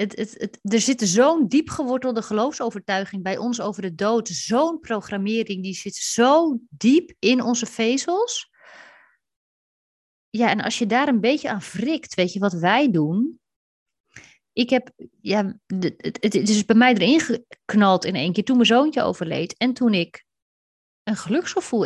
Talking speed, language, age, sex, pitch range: 165 wpm, Dutch, 30-49, female, 195-255 Hz